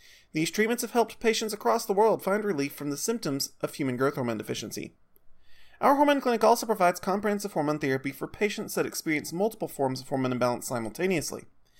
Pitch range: 145-210 Hz